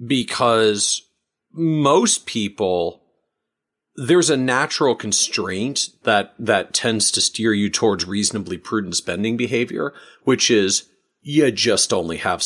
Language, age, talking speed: English, 40-59, 115 wpm